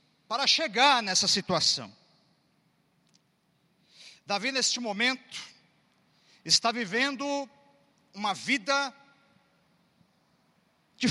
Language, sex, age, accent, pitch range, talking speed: Portuguese, male, 50-69, Brazilian, 210-290 Hz, 65 wpm